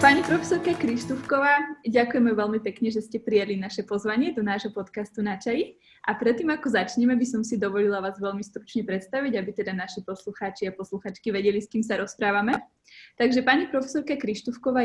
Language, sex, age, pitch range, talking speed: Slovak, female, 20-39, 200-240 Hz, 175 wpm